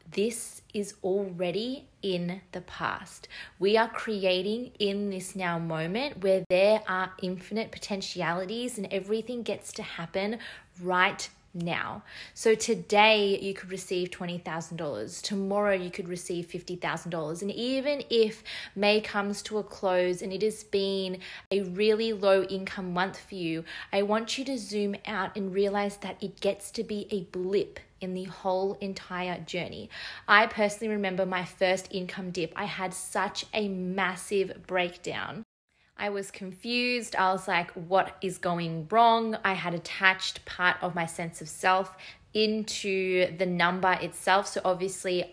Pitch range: 180-205 Hz